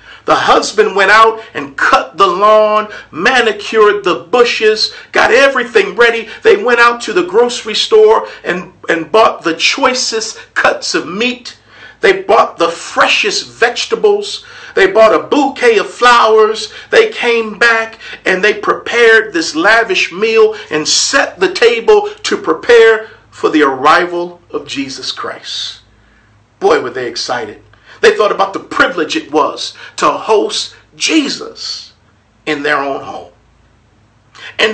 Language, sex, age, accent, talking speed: English, male, 50-69, American, 140 wpm